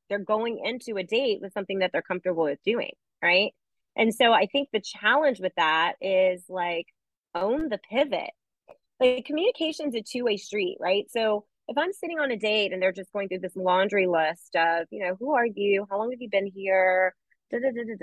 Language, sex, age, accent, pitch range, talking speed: English, female, 30-49, American, 185-245 Hz, 200 wpm